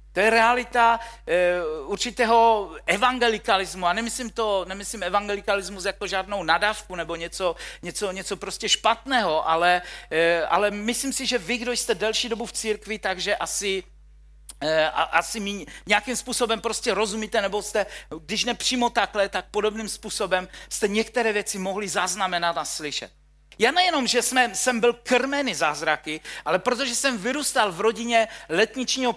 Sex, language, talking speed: male, Czech, 140 wpm